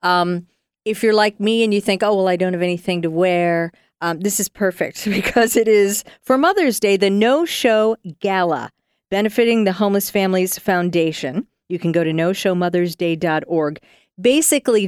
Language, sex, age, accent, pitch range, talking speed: English, female, 40-59, American, 180-235 Hz, 165 wpm